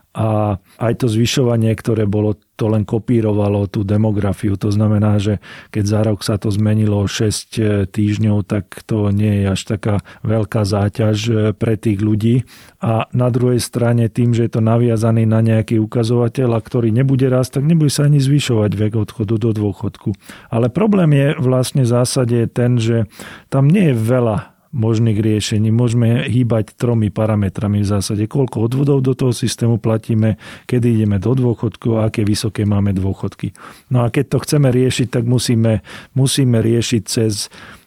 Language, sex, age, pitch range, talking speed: Slovak, male, 40-59, 110-130 Hz, 165 wpm